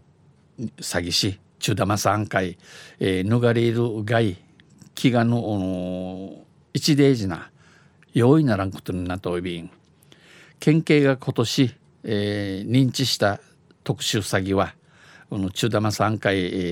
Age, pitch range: 60-79, 95-125 Hz